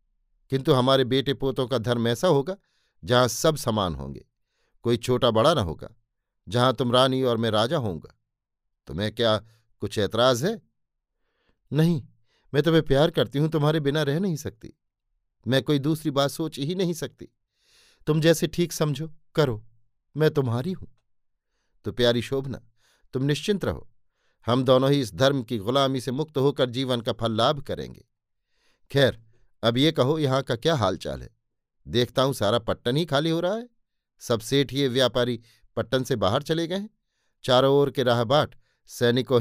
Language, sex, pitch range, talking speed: Hindi, male, 115-140 Hz, 170 wpm